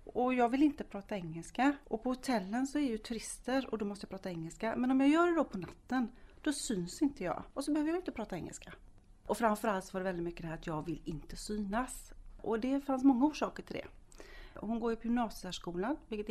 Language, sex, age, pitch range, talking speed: Polish, female, 40-59, 180-245 Hz, 235 wpm